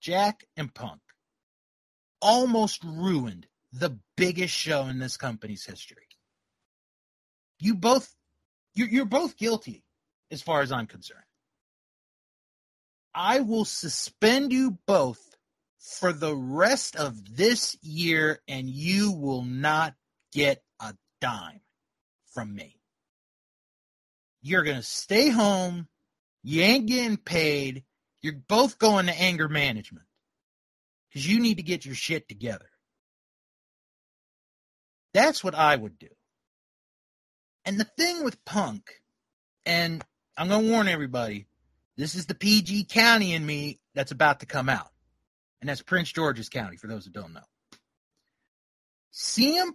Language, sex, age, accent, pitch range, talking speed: English, male, 30-49, American, 135-215 Hz, 125 wpm